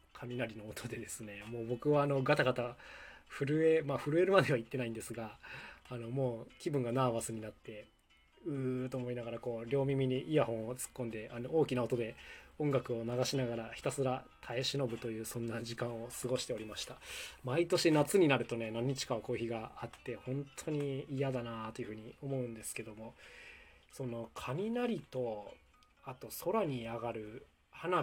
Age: 20-39